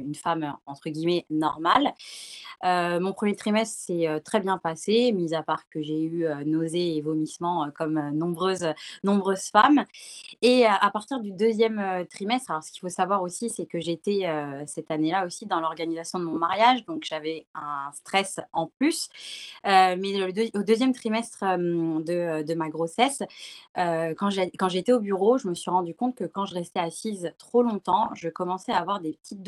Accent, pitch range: French, 155-195 Hz